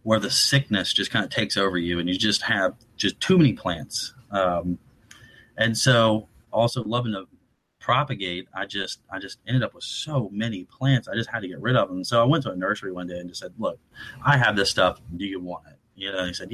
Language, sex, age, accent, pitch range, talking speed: English, male, 30-49, American, 95-120 Hz, 240 wpm